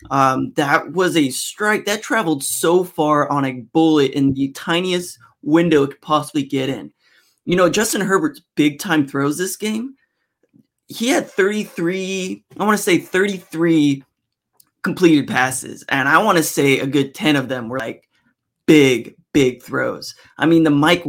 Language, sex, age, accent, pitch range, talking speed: English, male, 20-39, American, 140-175 Hz, 170 wpm